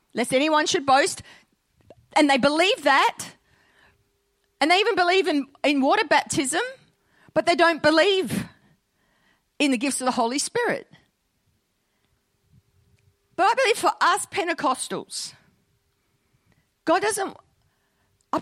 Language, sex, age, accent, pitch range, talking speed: English, female, 40-59, Australian, 215-325 Hz, 115 wpm